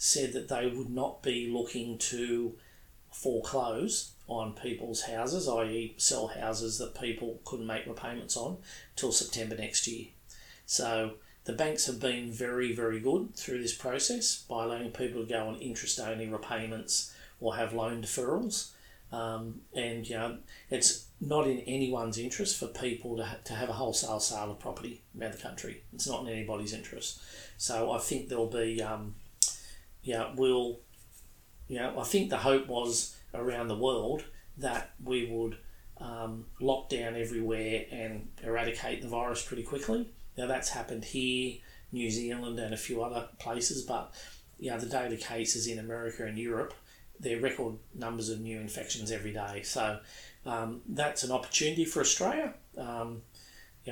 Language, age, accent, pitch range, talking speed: English, 40-59, Australian, 115-125 Hz, 165 wpm